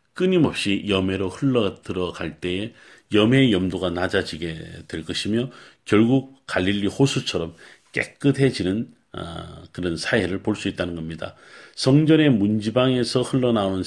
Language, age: Korean, 40-59